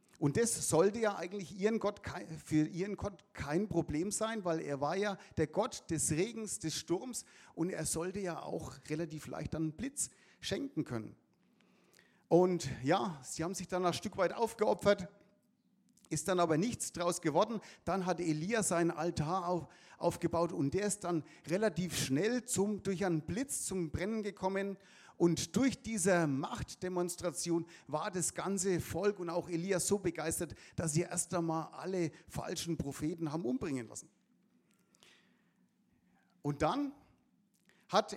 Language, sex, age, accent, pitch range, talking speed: German, male, 50-69, German, 165-205 Hz, 150 wpm